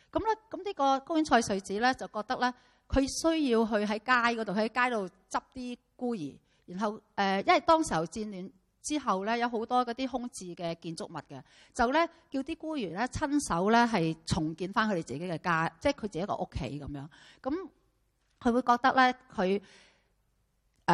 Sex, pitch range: female, 160-240 Hz